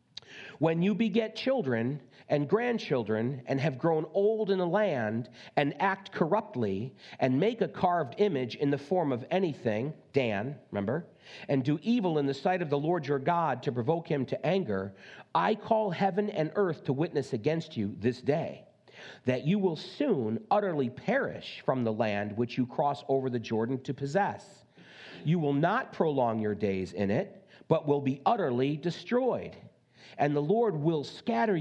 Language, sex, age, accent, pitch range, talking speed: English, male, 40-59, American, 125-185 Hz, 170 wpm